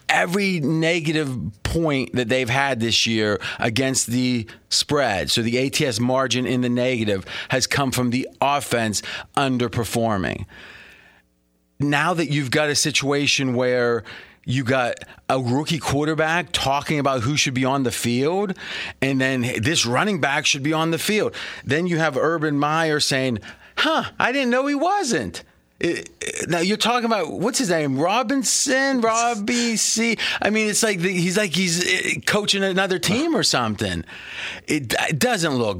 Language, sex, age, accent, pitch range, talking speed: English, male, 30-49, American, 125-170 Hz, 160 wpm